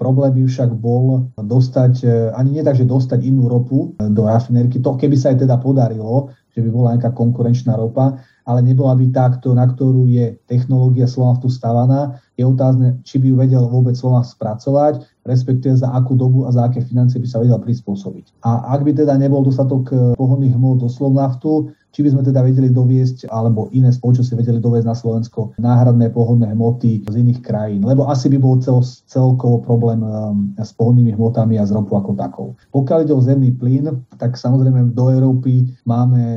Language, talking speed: Slovak, 185 wpm